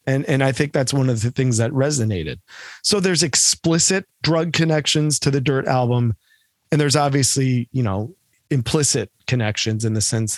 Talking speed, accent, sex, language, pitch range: 175 wpm, American, male, English, 115-150 Hz